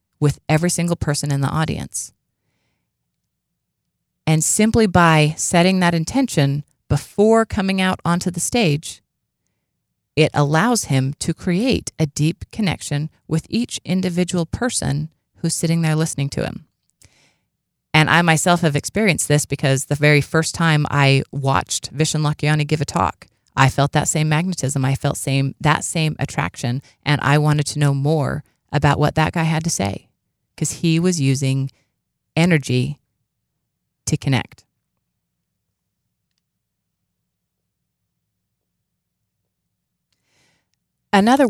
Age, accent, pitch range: 30-49, American, 140-170 Hz